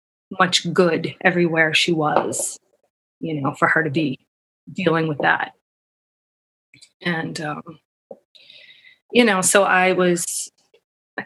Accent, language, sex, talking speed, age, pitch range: American, English, female, 115 wpm, 20-39, 170-210 Hz